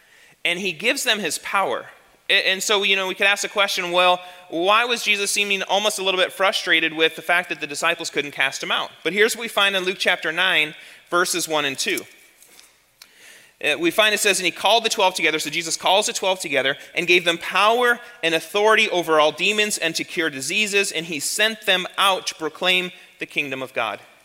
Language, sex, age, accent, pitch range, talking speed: English, male, 30-49, American, 170-210 Hz, 220 wpm